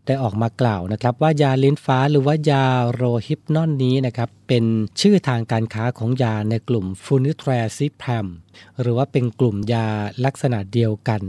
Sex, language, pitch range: male, Thai, 110-135 Hz